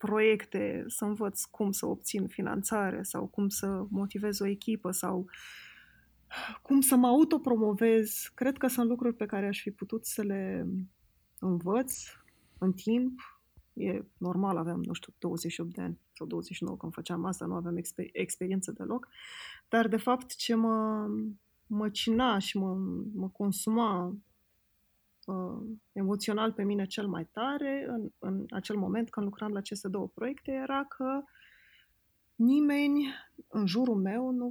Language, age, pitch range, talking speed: Romanian, 20-39, 195-235 Hz, 145 wpm